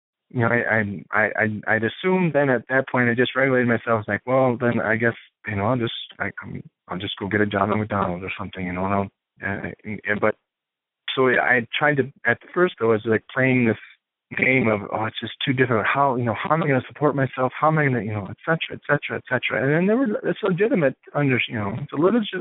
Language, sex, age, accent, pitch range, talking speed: English, male, 30-49, American, 100-130 Hz, 260 wpm